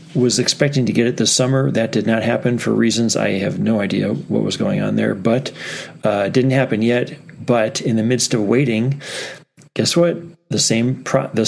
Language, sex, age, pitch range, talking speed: English, male, 40-59, 110-135 Hz, 205 wpm